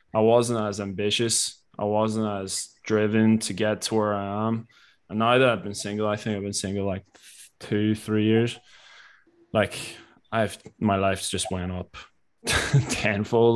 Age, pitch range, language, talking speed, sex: 20-39, 105-115 Hz, English, 170 wpm, male